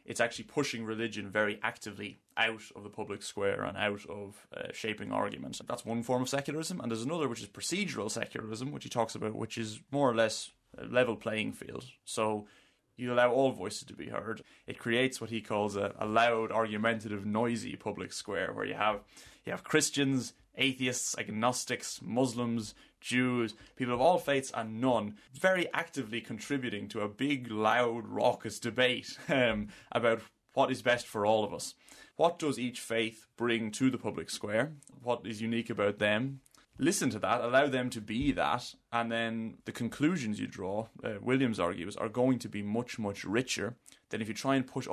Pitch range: 110-125 Hz